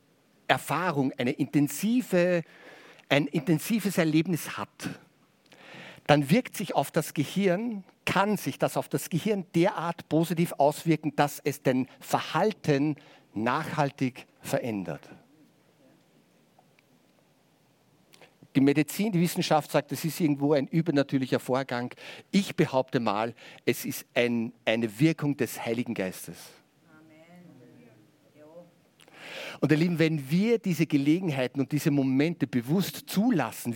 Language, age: German, 50-69